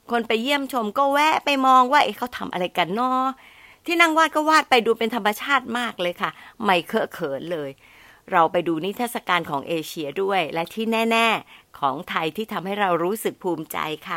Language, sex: Thai, female